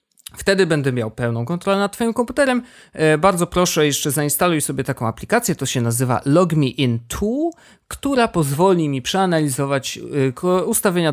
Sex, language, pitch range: male, Polish, 120-180 Hz